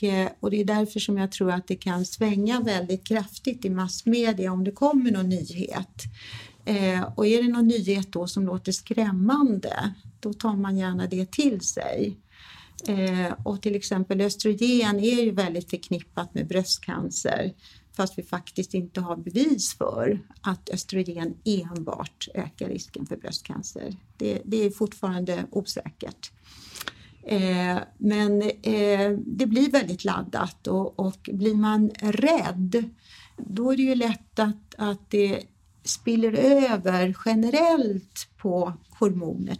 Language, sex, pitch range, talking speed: Swedish, female, 185-220 Hz, 140 wpm